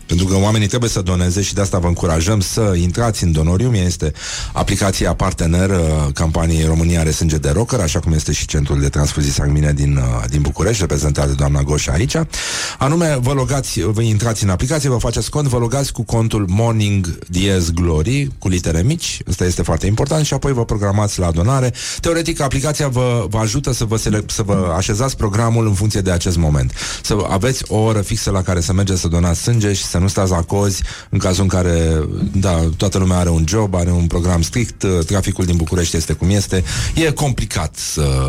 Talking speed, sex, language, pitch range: 200 wpm, male, Romanian, 85-115 Hz